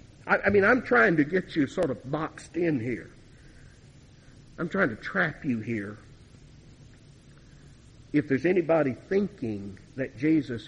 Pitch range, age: 125-165 Hz, 60-79